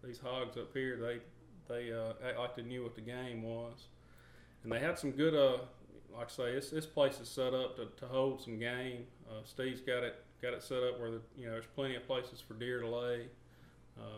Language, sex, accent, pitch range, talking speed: English, male, American, 115-130 Hz, 235 wpm